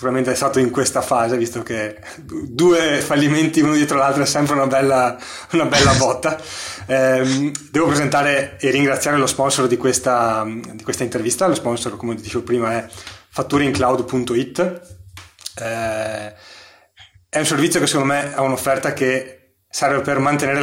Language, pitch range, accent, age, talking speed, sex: Italian, 120-145 Hz, native, 20-39, 150 wpm, male